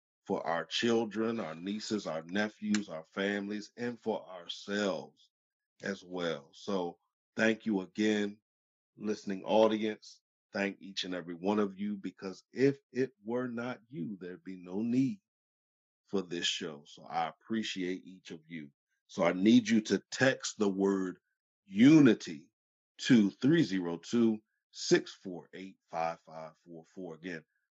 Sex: male